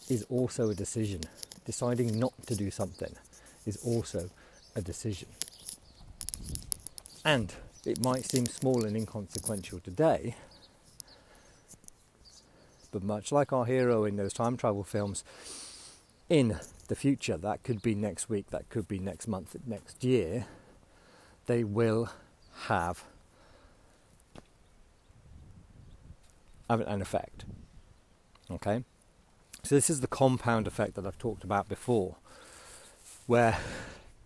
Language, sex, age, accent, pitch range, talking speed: English, male, 50-69, British, 100-120 Hz, 110 wpm